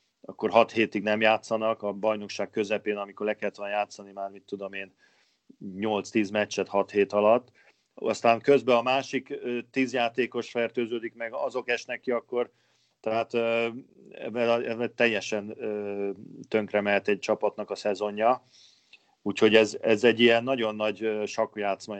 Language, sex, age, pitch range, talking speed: Hungarian, male, 40-59, 105-115 Hz, 140 wpm